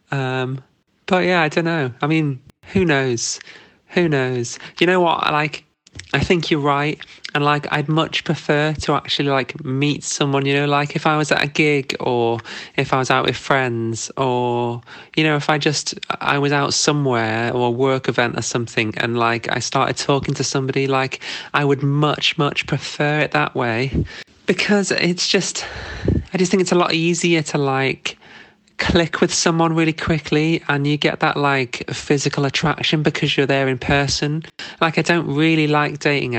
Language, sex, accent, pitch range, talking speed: English, male, British, 130-155 Hz, 185 wpm